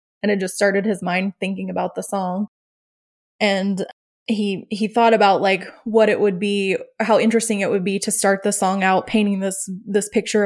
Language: English